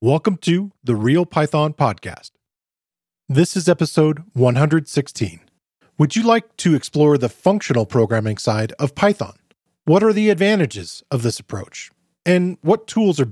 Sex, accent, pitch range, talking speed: male, American, 125-175 Hz, 145 wpm